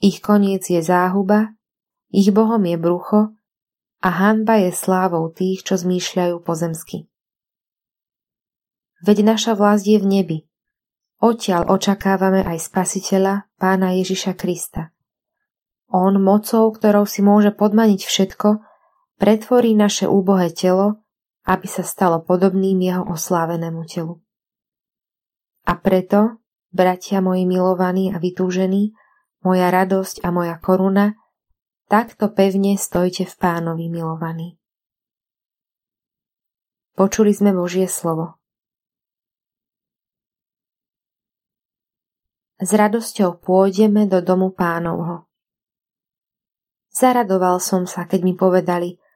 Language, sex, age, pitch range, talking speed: Slovak, female, 20-39, 180-210 Hz, 100 wpm